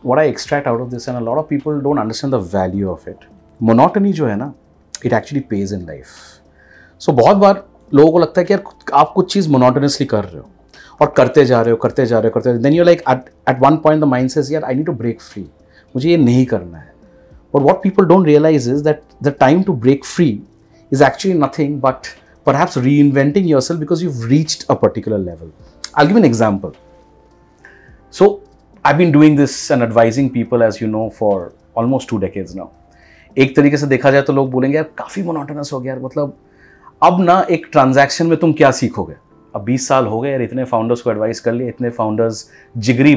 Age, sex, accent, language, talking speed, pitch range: 40-59, male, native, Hindi, 220 wpm, 115-155 Hz